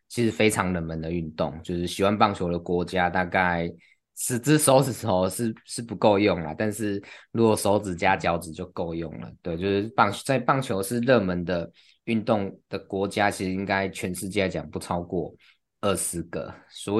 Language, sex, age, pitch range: Chinese, male, 20-39, 85-100 Hz